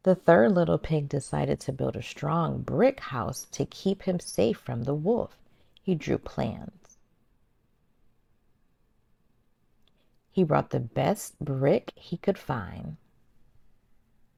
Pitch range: 140-190 Hz